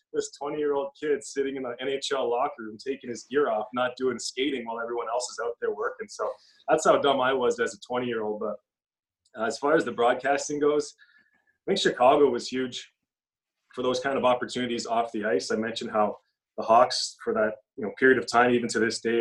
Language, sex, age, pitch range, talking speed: English, male, 30-49, 115-140 Hz, 210 wpm